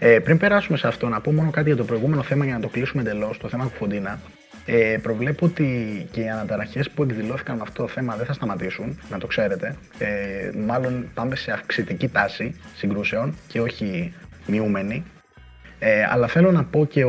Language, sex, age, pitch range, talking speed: Greek, male, 20-39, 110-140 Hz, 195 wpm